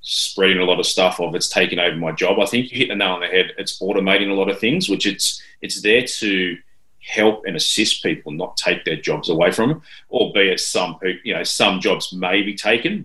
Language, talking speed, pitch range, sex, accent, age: English, 235 wpm, 90-100 Hz, male, Australian, 30-49